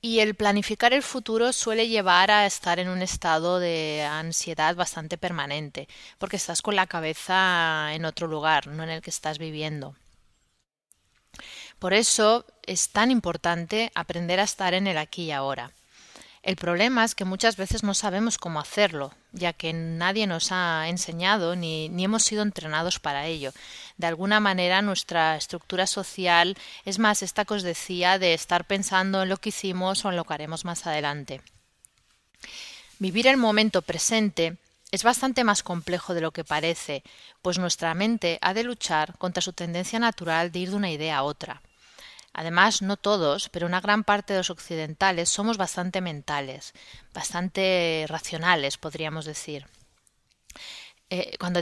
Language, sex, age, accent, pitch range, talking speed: Spanish, female, 30-49, Spanish, 160-200 Hz, 165 wpm